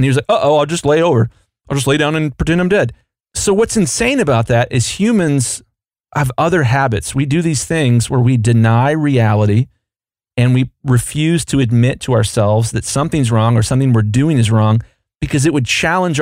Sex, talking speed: male, 205 wpm